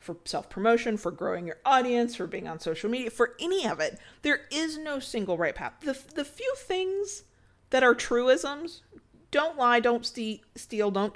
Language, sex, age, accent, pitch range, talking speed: English, female, 40-59, American, 190-275 Hz, 185 wpm